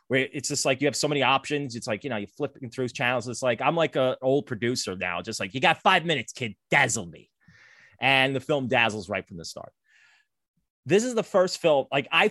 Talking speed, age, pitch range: 240 wpm, 20-39, 115-150 Hz